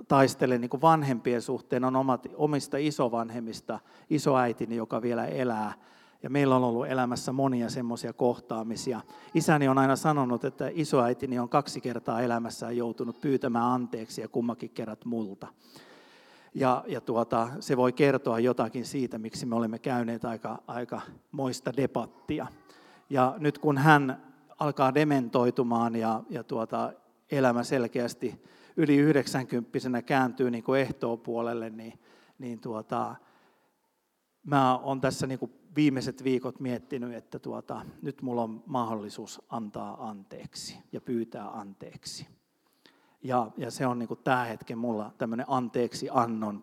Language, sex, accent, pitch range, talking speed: Finnish, male, native, 115-135 Hz, 130 wpm